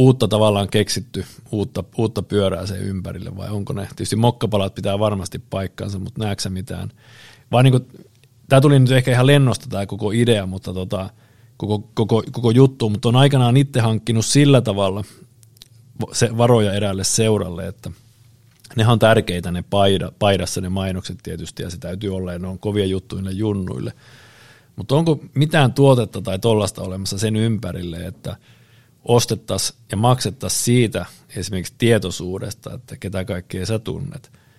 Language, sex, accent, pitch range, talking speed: Finnish, male, native, 95-120 Hz, 145 wpm